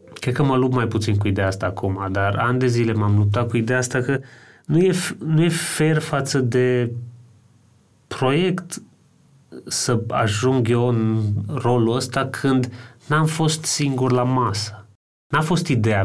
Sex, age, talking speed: male, 30-49, 160 wpm